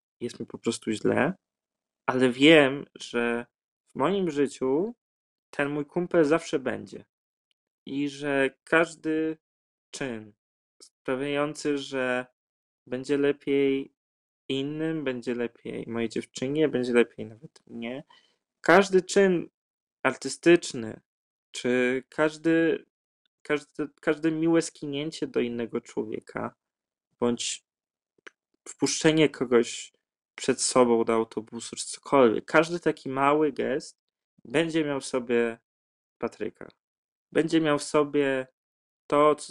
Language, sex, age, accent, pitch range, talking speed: Polish, male, 20-39, native, 120-155 Hz, 105 wpm